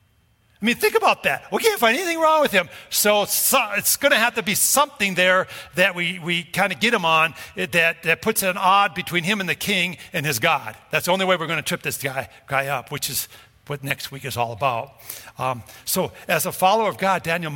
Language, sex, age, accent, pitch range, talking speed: English, male, 50-69, American, 135-185 Hz, 245 wpm